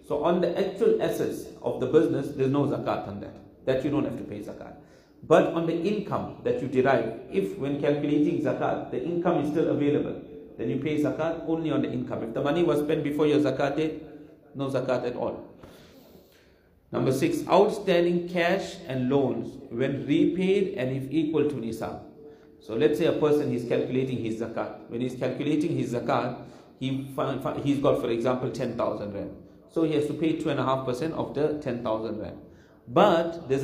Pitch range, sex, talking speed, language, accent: 130-160 Hz, male, 190 wpm, English, Indian